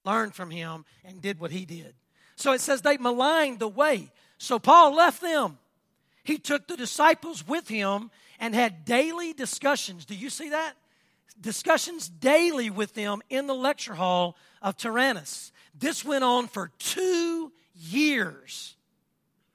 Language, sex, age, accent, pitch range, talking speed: English, male, 40-59, American, 195-275 Hz, 150 wpm